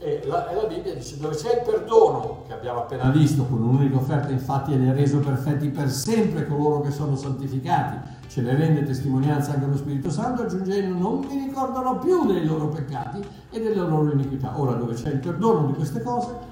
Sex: male